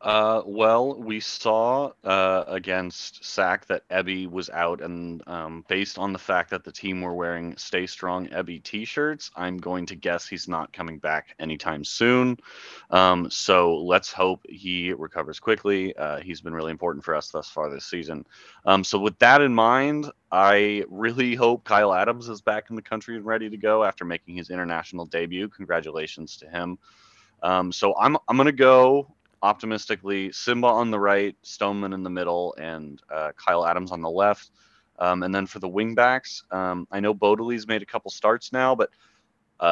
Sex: male